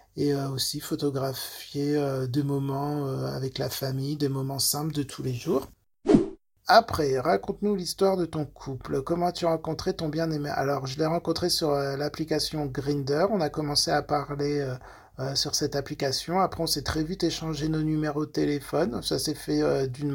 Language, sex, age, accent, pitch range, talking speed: French, male, 40-59, French, 140-165 Hz, 185 wpm